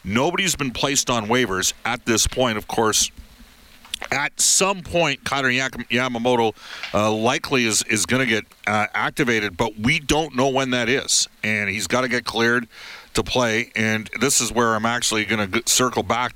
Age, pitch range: 50-69, 105-125 Hz